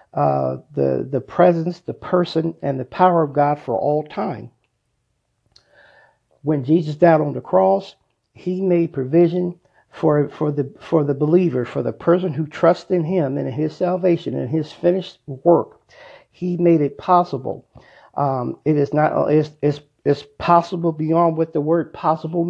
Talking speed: 165 wpm